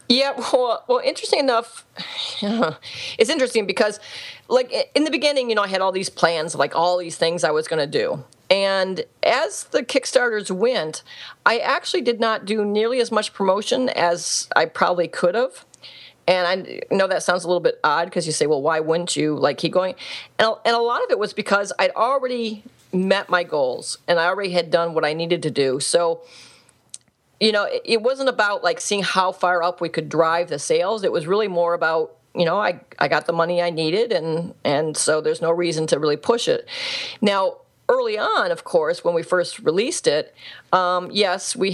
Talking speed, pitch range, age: 205 wpm, 170-265 Hz, 40-59